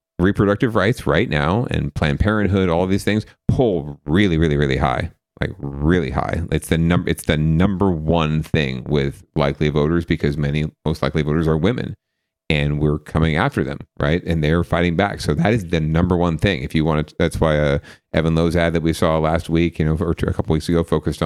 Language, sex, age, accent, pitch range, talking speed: English, male, 40-59, American, 75-90 Hz, 220 wpm